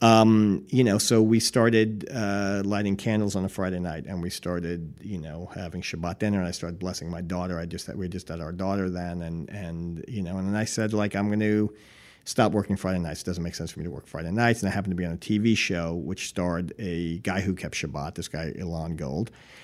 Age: 40-59